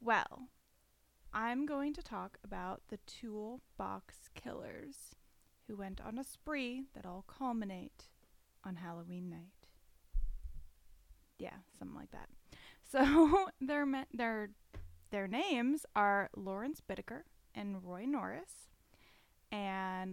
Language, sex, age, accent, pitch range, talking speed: English, female, 10-29, American, 195-265 Hz, 110 wpm